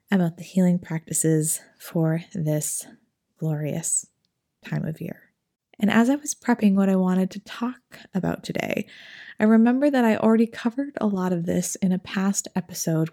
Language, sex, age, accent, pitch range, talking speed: English, female, 20-39, American, 165-215 Hz, 165 wpm